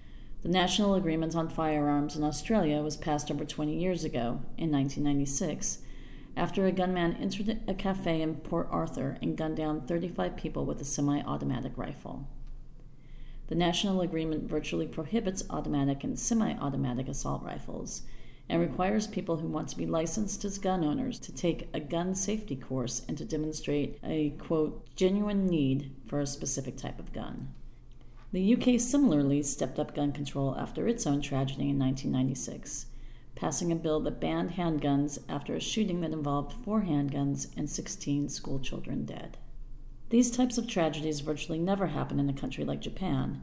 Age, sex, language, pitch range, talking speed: 40-59, female, English, 140-175 Hz, 160 wpm